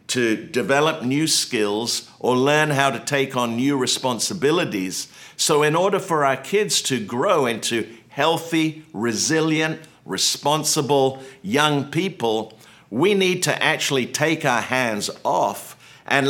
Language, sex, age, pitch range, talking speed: English, male, 50-69, 115-140 Hz, 130 wpm